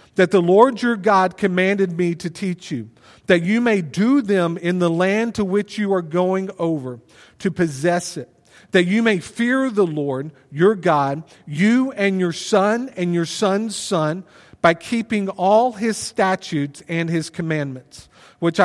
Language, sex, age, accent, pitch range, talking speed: English, male, 40-59, American, 165-205 Hz, 165 wpm